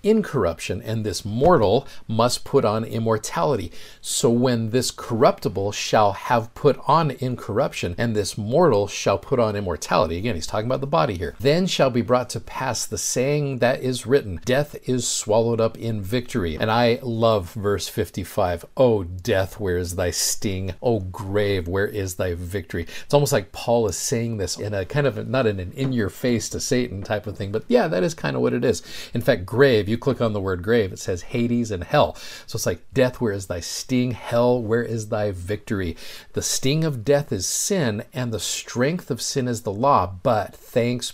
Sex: male